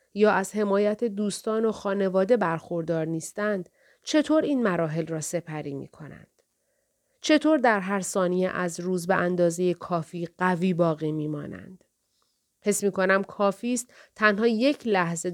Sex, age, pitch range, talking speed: female, 30-49, 175-215 Hz, 135 wpm